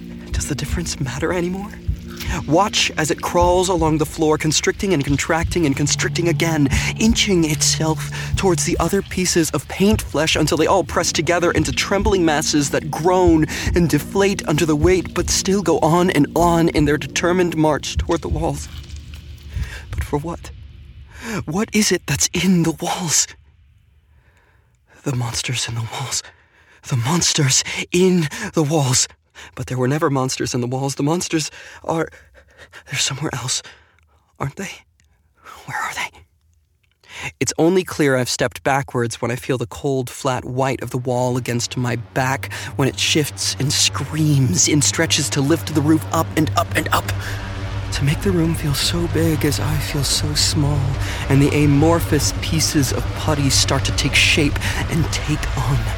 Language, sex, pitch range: English, male, 100-160 Hz